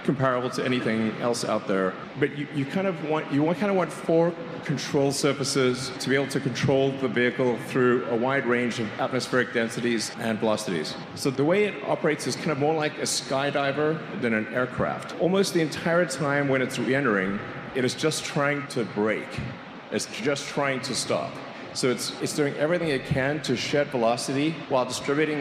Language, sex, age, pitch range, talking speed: English, male, 30-49, 125-145 Hz, 190 wpm